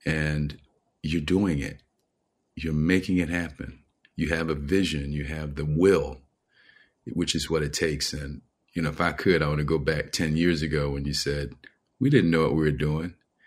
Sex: male